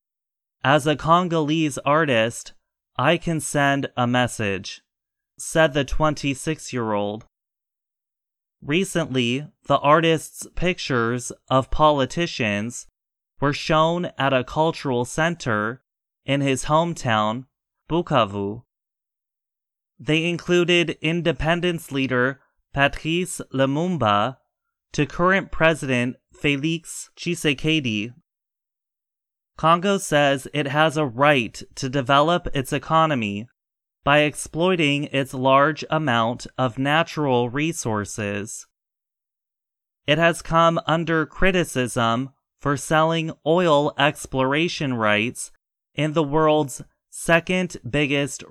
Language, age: English, 20-39